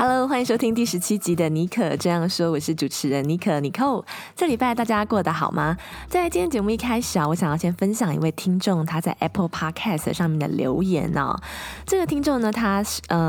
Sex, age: female, 20-39